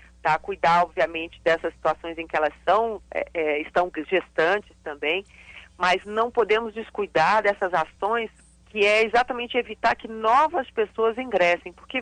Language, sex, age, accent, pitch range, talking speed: Portuguese, female, 40-59, Brazilian, 175-245 Hz, 140 wpm